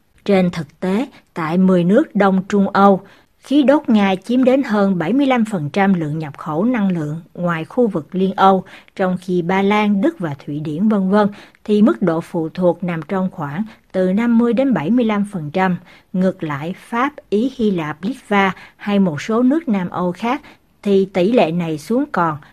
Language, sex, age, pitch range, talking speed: Vietnamese, female, 60-79, 175-225 Hz, 175 wpm